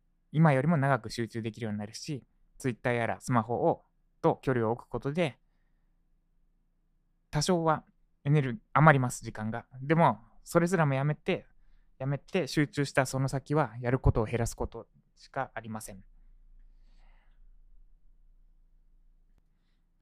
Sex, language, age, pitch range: male, Japanese, 20-39, 115-165 Hz